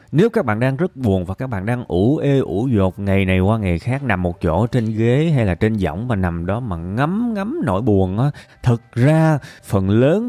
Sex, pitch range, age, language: male, 95-140 Hz, 20-39, Vietnamese